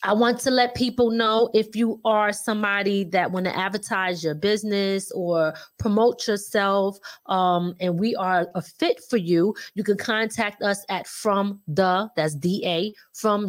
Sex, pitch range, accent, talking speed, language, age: female, 185-235 Hz, American, 165 wpm, English, 30-49